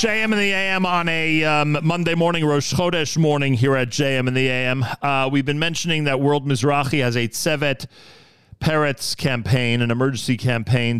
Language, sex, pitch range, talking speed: English, male, 105-130 Hz, 180 wpm